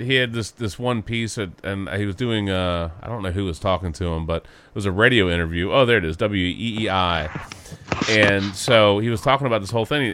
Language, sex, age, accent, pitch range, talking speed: English, male, 30-49, American, 100-130 Hz, 225 wpm